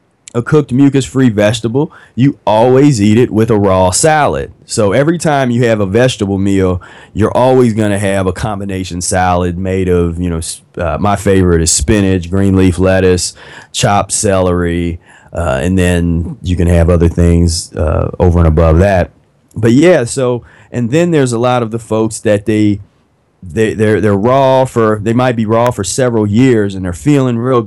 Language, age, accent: English, 30-49, American